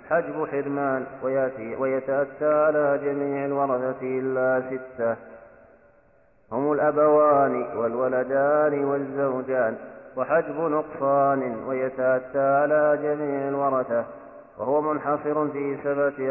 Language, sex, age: Arabic, male, 30-49